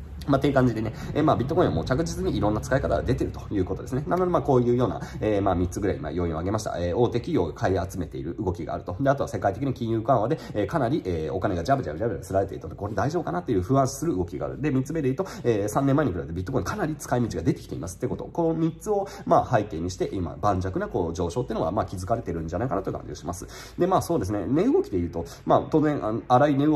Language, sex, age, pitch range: Japanese, male, 30-49, 90-140 Hz